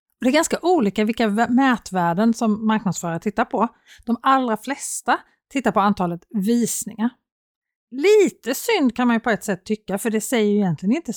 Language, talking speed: Swedish, 170 wpm